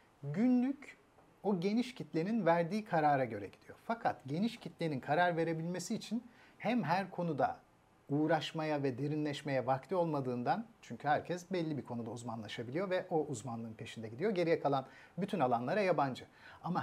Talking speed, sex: 140 wpm, male